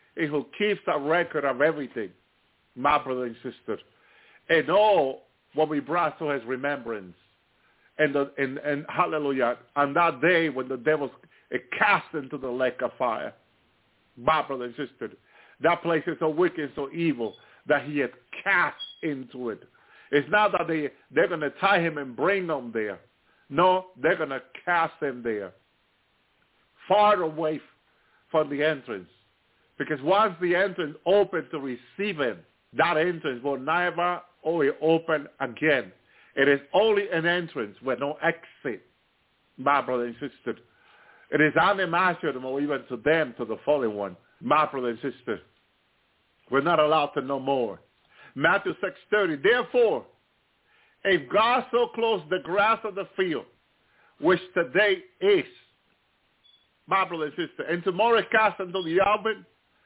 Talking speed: 150 wpm